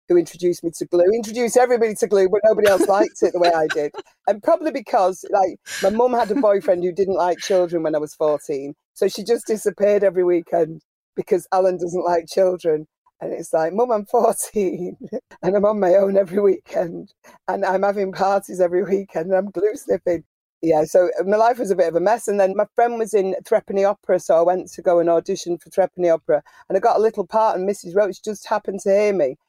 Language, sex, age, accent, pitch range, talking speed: English, female, 40-59, British, 170-210 Hz, 225 wpm